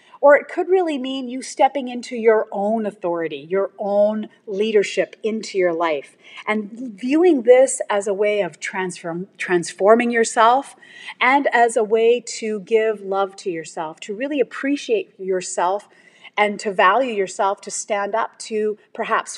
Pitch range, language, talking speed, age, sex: 190-245 Hz, English, 150 wpm, 40-59, female